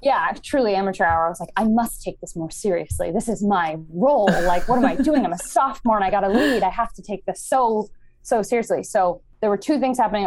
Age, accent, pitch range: 20-39, American, 180-245 Hz